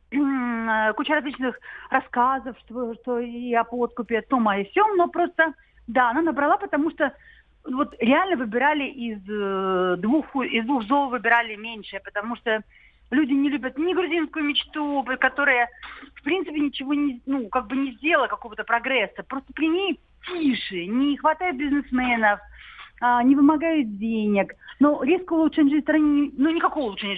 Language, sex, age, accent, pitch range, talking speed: Russian, female, 40-59, native, 225-310 Hz, 155 wpm